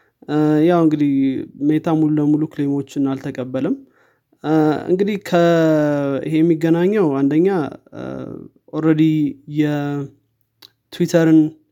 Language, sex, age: Amharic, male, 20-39